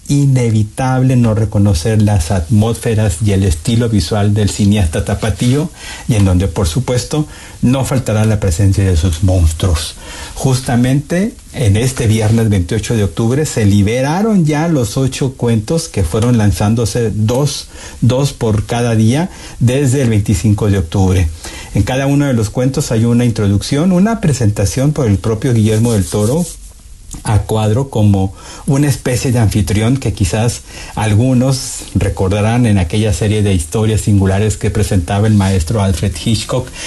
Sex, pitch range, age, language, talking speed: male, 100-125 Hz, 50-69, Spanish, 145 wpm